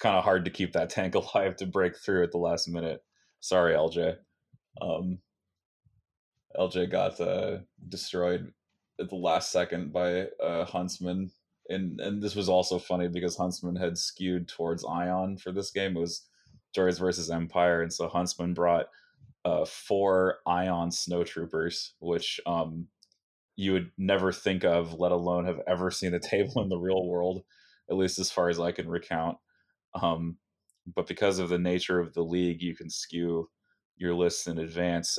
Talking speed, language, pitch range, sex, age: 170 wpm, English, 85-90 Hz, male, 20-39